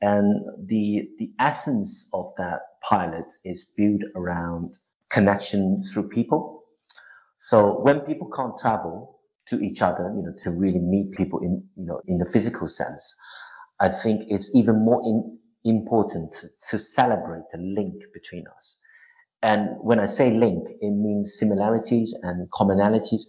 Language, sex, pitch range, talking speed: English, male, 95-115 Hz, 150 wpm